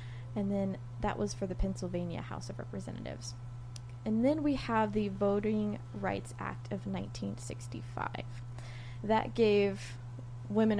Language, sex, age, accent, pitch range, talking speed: English, female, 20-39, American, 120-195 Hz, 130 wpm